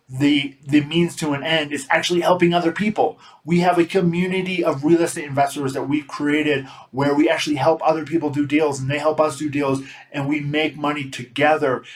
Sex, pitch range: male, 140-175 Hz